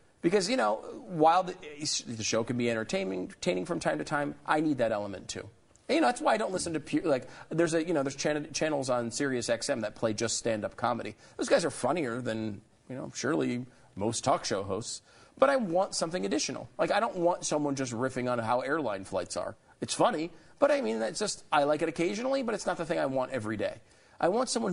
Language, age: English, 40-59